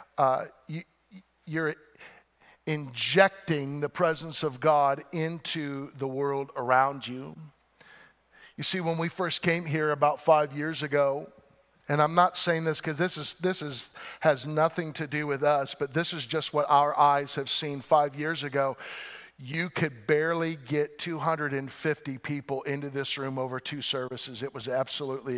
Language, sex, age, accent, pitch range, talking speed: English, male, 50-69, American, 135-160 Hz, 160 wpm